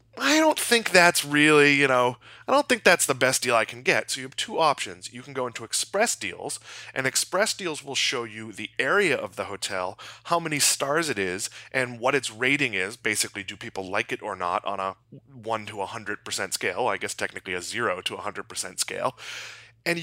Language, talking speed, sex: English, 215 wpm, male